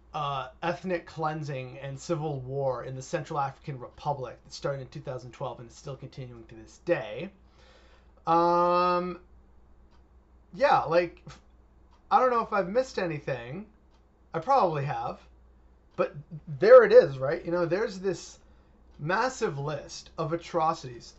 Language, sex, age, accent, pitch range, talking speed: English, male, 30-49, American, 130-175 Hz, 135 wpm